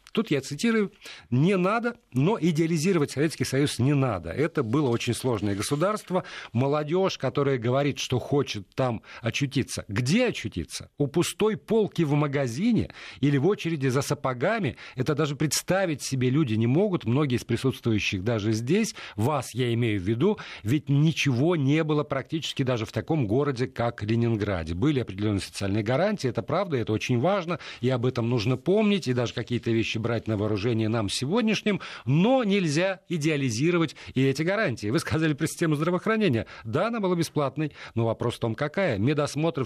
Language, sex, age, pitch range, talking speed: Russian, male, 40-59, 115-165 Hz, 160 wpm